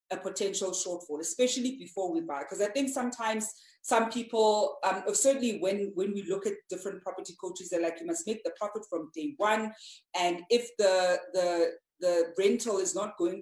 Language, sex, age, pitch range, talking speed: English, female, 30-49, 175-220 Hz, 190 wpm